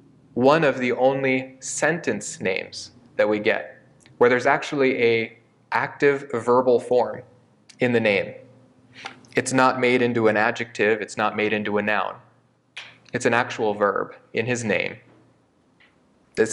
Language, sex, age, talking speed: English, male, 20-39, 140 wpm